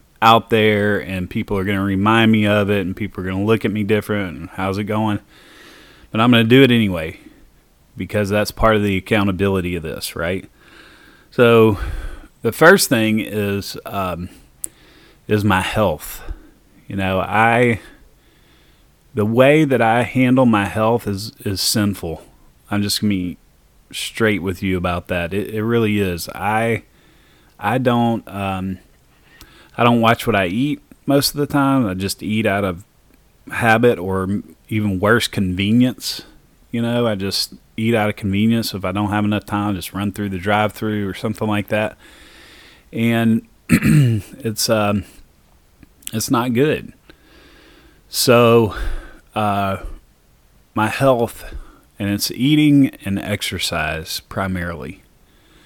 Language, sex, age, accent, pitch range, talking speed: English, male, 30-49, American, 95-115 Hz, 150 wpm